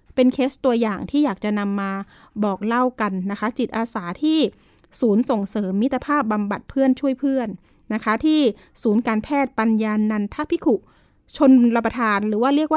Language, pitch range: Thai, 215-275 Hz